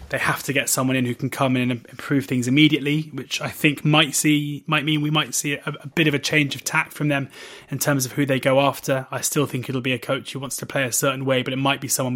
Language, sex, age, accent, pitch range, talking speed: English, male, 20-39, British, 125-140 Hz, 295 wpm